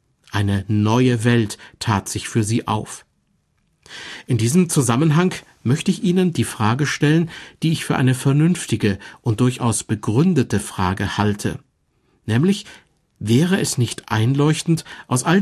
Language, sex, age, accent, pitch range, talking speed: German, male, 50-69, German, 115-155 Hz, 130 wpm